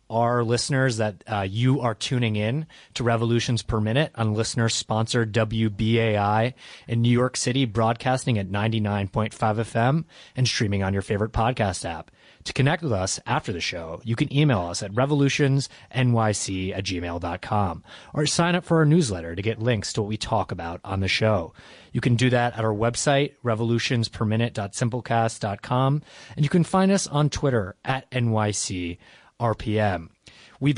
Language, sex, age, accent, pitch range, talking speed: English, male, 30-49, American, 110-135 Hz, 160 wpm